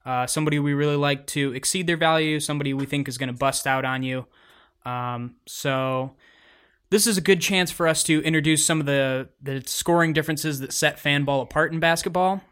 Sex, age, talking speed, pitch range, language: male, 20-39, 200 wpm, 130-160 Hz, English